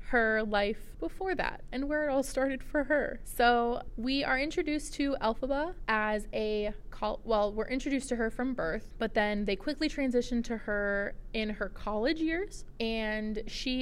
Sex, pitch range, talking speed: female, 215-270 Hz, 175 wpm